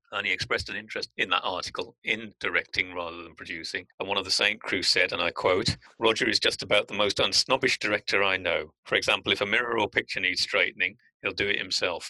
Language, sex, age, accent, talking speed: English, male, 40-59, British, 230 wpm